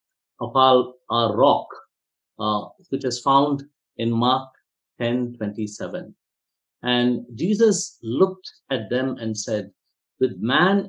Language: English